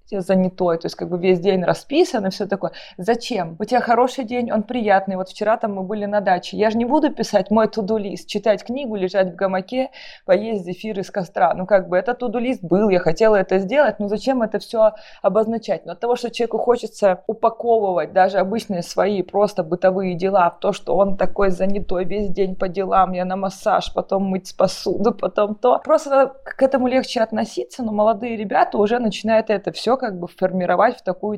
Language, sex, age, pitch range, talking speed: Russian, female, 20-39, 190-230 Hz, 200 wpm